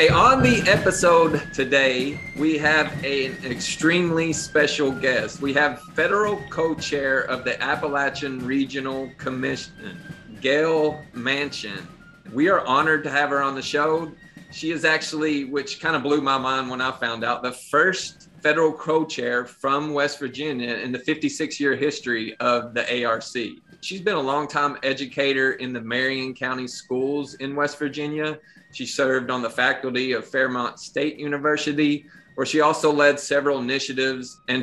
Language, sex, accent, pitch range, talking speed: English, male, American, 130-150 Hz, 160 wpm